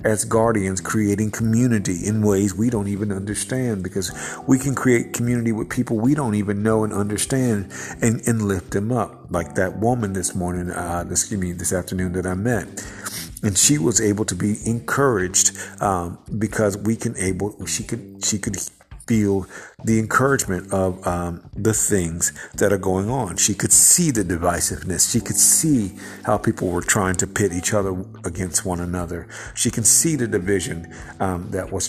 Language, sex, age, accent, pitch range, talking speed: English, male, 50-69, American, 95-115 Hz, 185 wpm